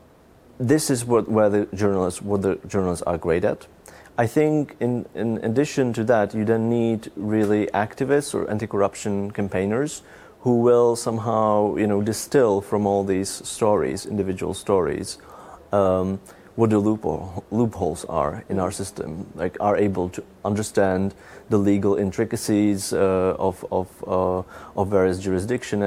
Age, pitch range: 30-49, 95-110 Hz